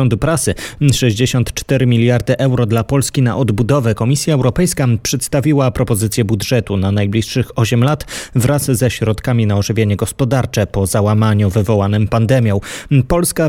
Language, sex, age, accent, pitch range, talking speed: Polish, male, 30-49, native, 115-140 Hz, 120 wpm